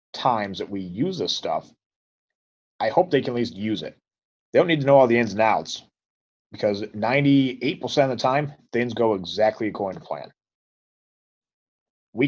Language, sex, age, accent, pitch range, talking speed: English, male, 30-49, American, 105-135 Hz, 180 wpm